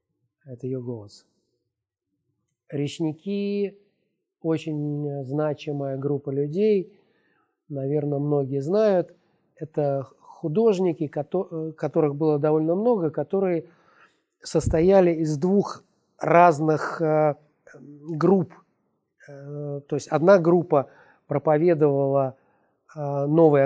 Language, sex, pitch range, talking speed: Russian, male, 140-175 Hz, 75 wpm